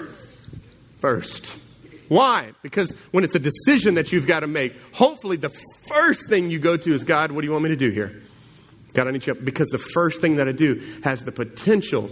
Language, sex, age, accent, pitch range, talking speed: English, male, 30-49, American, 130-175 Hz, 220 wpm